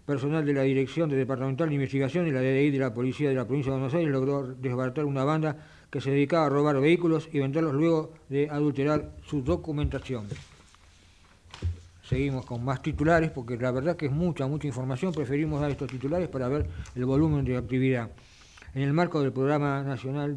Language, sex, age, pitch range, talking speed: Italian, male, 50-69, 130-155 Hz, 190 wpm